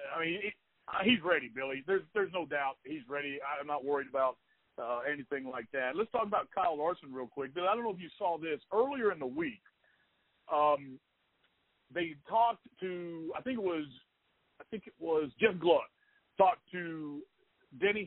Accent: American